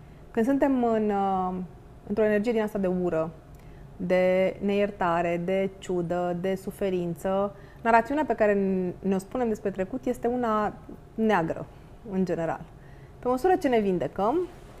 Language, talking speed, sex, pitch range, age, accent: Romanian, 125 wpm, female, 175-240 Hz, 30-49, native